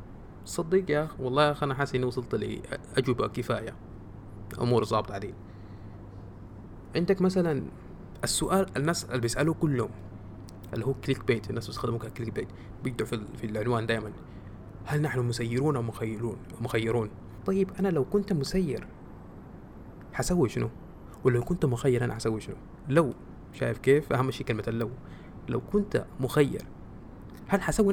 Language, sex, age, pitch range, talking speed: Arabic, male, 20-39, 110-155 Hz, 135 wpm